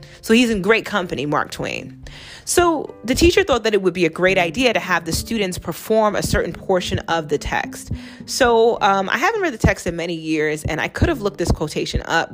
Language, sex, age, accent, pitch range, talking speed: English, female, 30-49, American, 160-220 Hz, 230 wpm